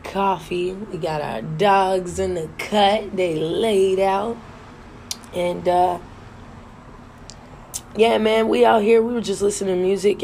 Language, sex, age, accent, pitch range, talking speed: English, female, 20-39, American, 135-200 Hz, 140 wpm